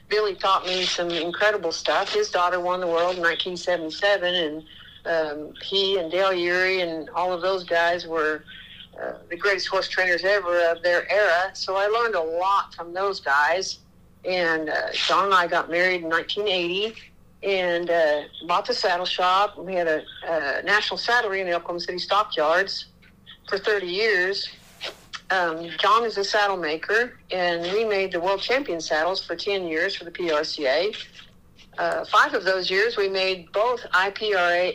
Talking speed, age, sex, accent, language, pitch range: 170 wpm, 60-79, female, American, English, 165-195 Hz